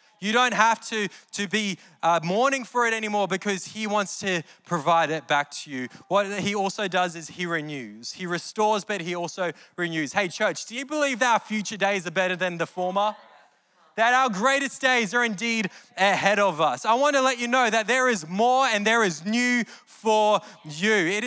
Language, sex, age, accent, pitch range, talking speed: English, male, 20-39, Australian, 175-225 Hz, 205 wpm